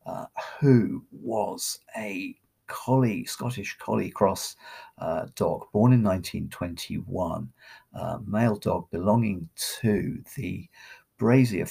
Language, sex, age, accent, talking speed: English, male, 50-69, British, 105 wpm